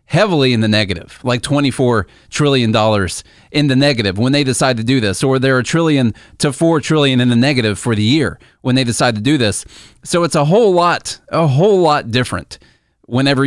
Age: 30-49